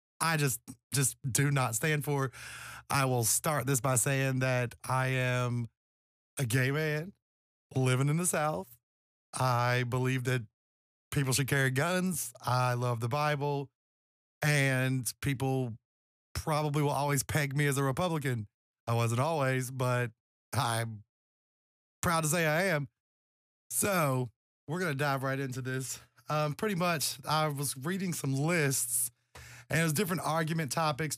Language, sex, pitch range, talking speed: English, male, 120-150 Hz, 145 wpm